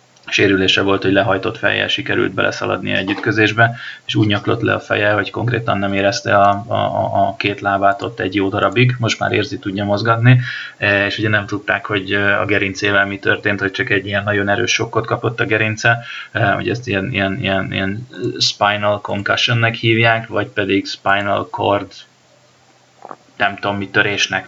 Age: 20-39